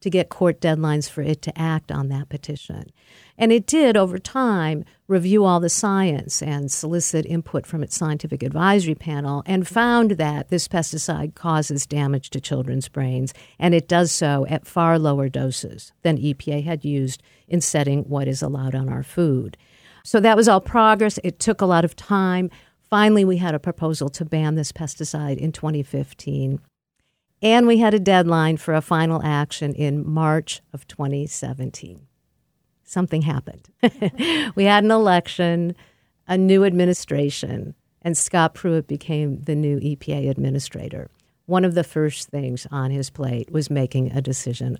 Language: English